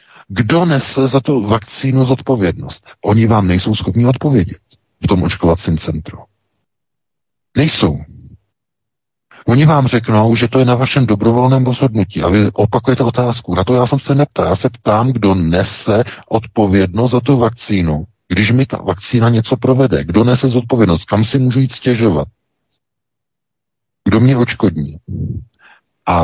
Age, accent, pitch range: 50-69, native, 95-125 Hz